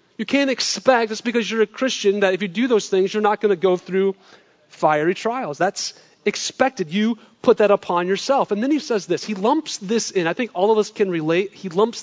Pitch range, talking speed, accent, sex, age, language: 190-235 Hz, 235 wpm, American, male, 30-49, English